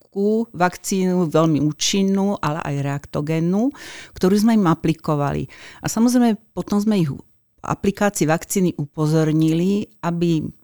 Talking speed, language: 120 wpm, Slovak